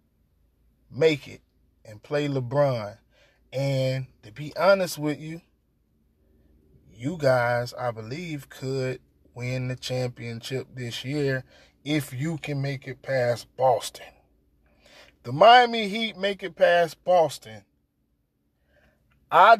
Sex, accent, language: male, American, English